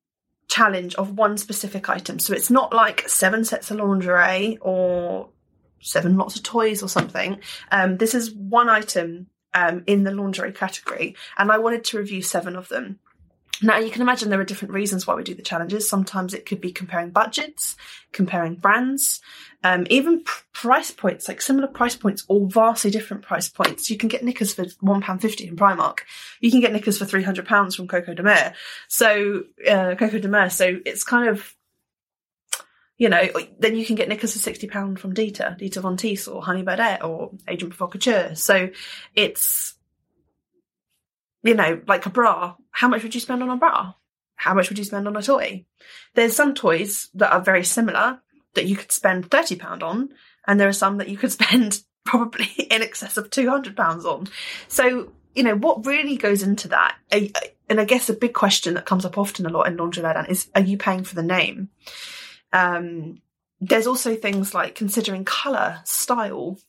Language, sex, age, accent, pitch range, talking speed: English, female, 20-39, British, 190-235 Hz, 190 wpm